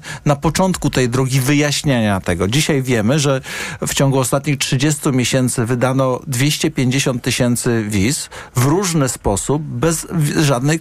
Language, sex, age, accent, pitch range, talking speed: Polish, male, 50-69, native, 135-170 Hz, 130 wpm